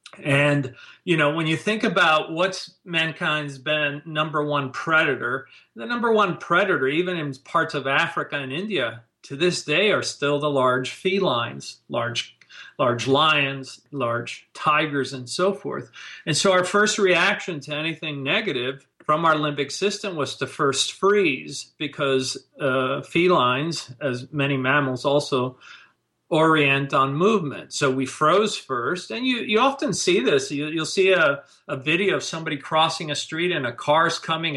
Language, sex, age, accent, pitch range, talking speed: English, male, 40-59, American, 140-180 Hz, 155 wpm